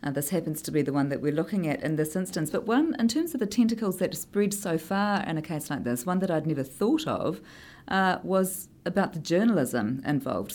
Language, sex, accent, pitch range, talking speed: English, female, Australian, 150-185 Hz, 240 wpm